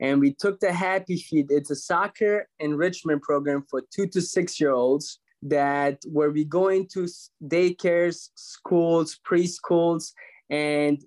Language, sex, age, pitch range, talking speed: English, male, 20-39, 145-175 Hz, 130 wpm